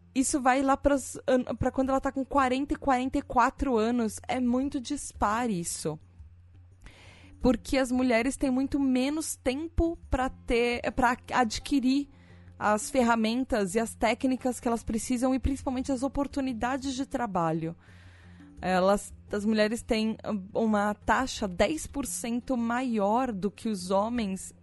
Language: Portuguese